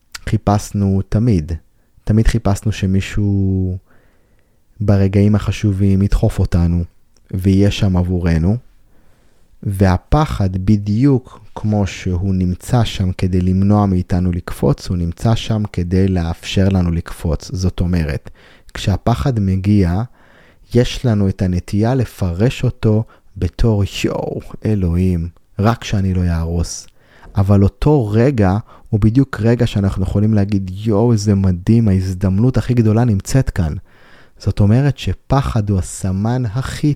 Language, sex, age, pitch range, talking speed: Hebrew, male, 30-49, 95-110 Hz, 110 wpm